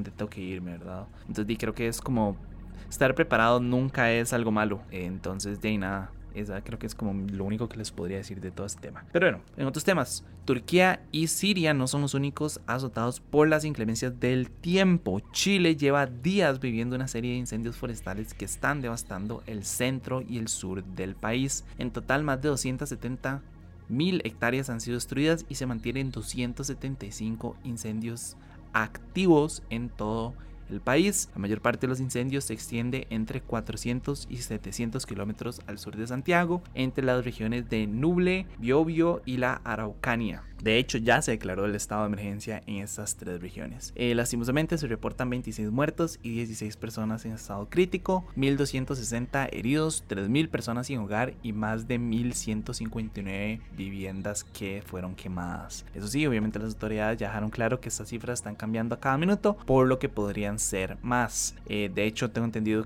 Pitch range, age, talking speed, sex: 105-130 Hz, 20-39, 175 wpm, male